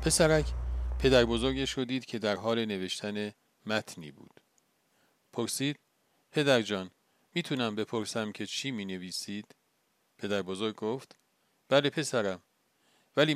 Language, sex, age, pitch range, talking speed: Persian, male, 50-69, 105-140 Hz, 110 wpm